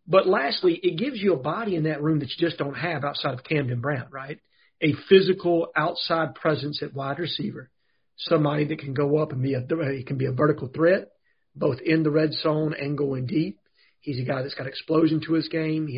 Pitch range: 145-170 Hz